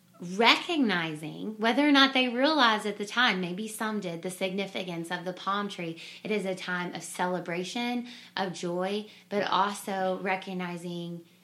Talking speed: 150 wpm